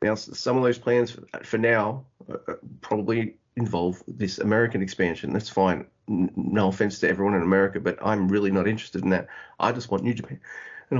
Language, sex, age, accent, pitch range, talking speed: English, male, 30-49, Australian, 95-125 Hz, 185 wpm